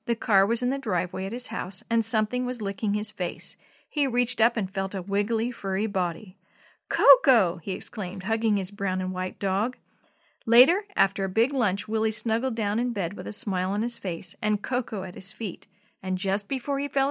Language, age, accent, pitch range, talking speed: English, 50-69, American, 190-250 Hz, 205 wpm